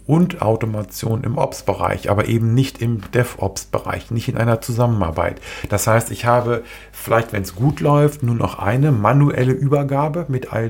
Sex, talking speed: male, 165 wpm